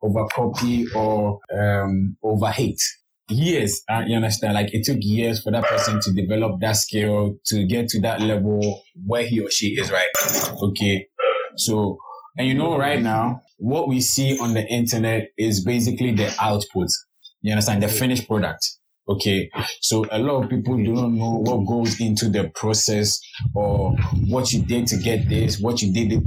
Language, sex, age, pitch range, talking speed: English, male, 20-39, 105-120 Hz, 175 wpm